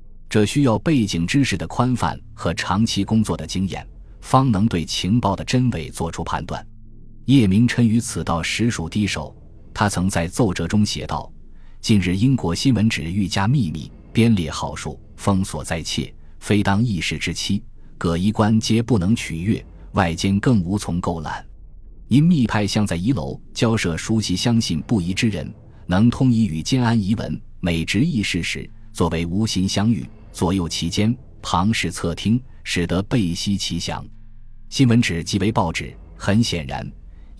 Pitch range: 85-115 Hz